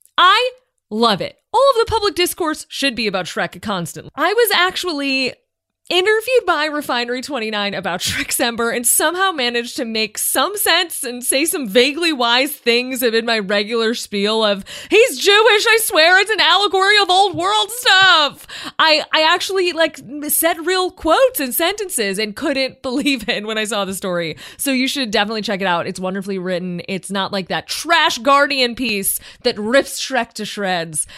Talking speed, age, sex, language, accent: 175 wpm, 20-39, female, English, American